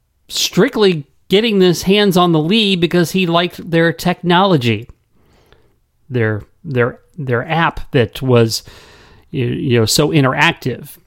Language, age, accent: English, 40-59, American